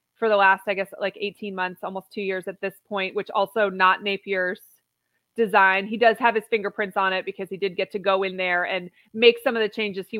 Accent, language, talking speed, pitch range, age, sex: American, English, 240 wpm, 190-230 Hz, 30-49, female